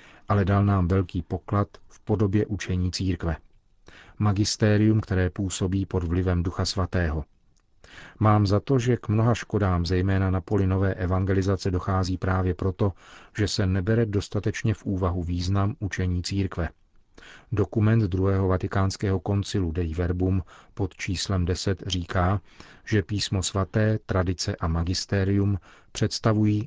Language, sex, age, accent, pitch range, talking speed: Czech, male, 40-59, native, 90-105 Hz, 130 wpm